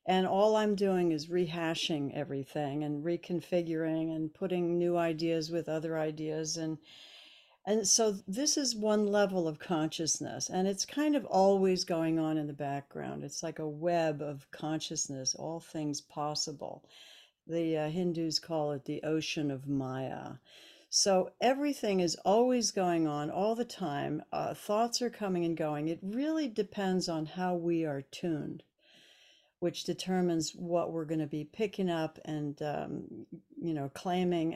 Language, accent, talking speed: English, American, 155 wpm